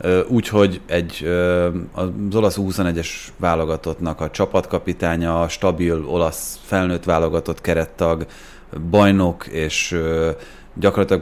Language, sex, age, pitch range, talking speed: Hungarian, male, 30-49, 85-100 Hz, 85 wpm